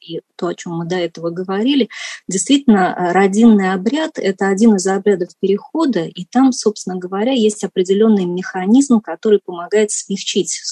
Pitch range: 180-215 Hz